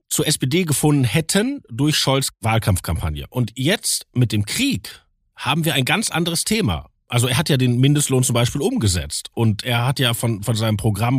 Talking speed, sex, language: 190 wpm, male, German